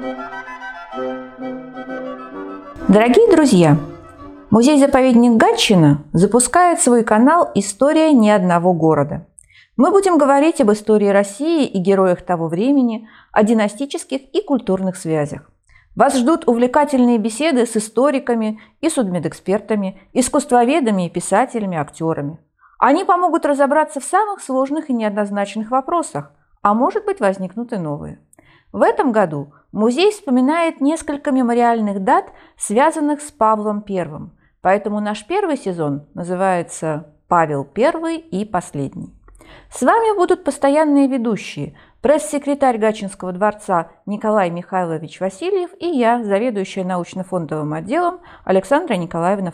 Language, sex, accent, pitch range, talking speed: Russian, female, native, 180-280 Hz, 110 wpm